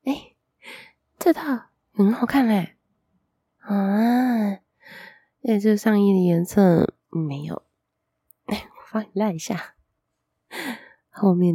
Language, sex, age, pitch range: Chinese, female, 20-39, 160-205 Hz